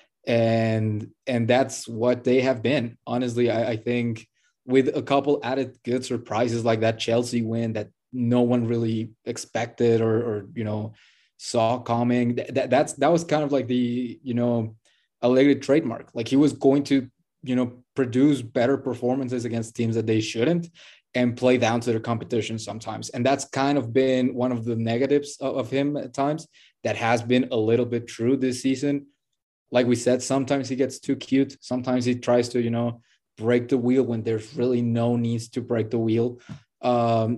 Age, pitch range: 20-39, 115-130 Hz